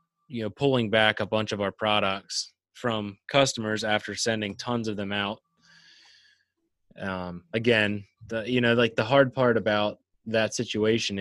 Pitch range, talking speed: 105-120 Hz, 155 wpm